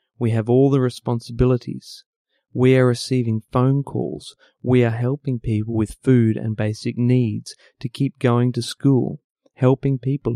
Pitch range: 115-135 Hz